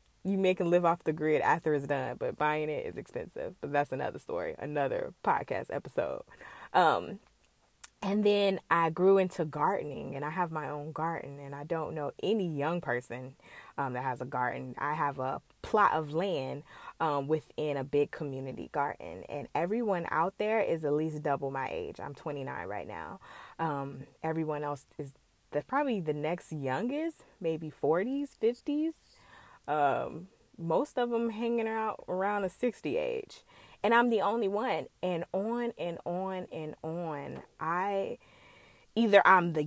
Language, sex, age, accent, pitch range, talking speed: English, female, 20-39, American, 150-225 Hz, 165 wpm